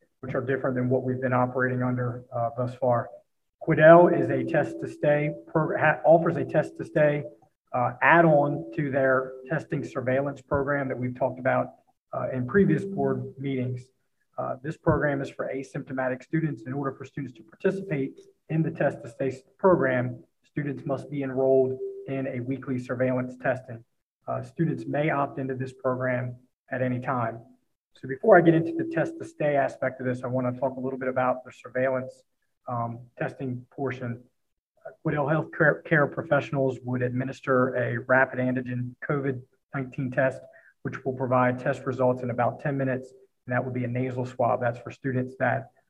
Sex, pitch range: male, 125-140 Hz